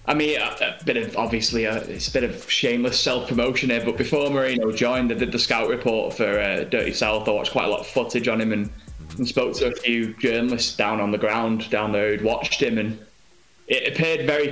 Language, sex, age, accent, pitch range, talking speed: English, male, 20-39, British, 105-130 Hz, 230 wpm